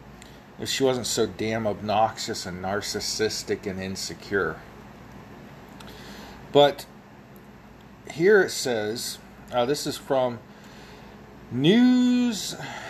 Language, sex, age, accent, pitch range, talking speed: English, male, 40-59, American, 120-170 Hz, 90 wpm